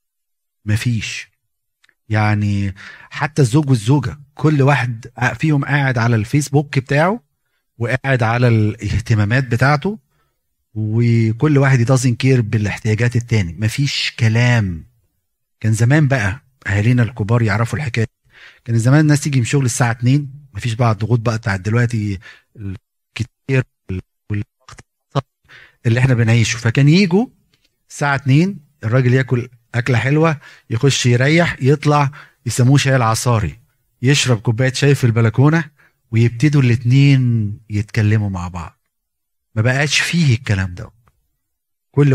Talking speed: 110 wpm